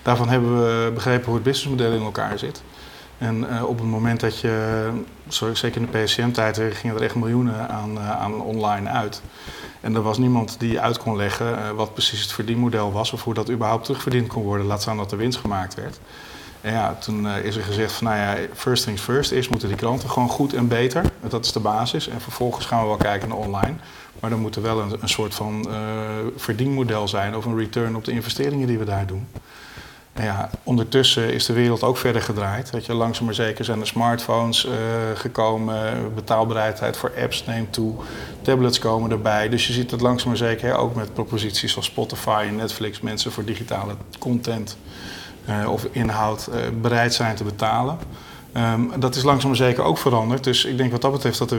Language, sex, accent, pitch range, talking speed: Dutch, male, Dutch, 110-120 Hz, 205 wpm